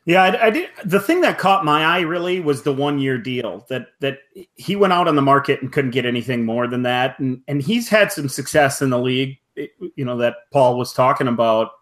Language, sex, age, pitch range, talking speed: English, male, 30-49, 135-160 Hz, 240 wpm